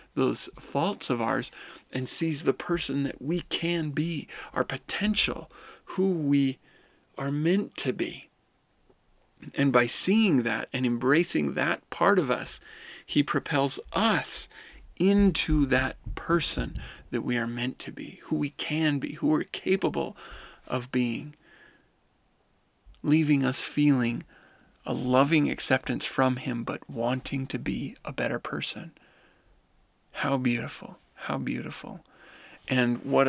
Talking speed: 130 wpm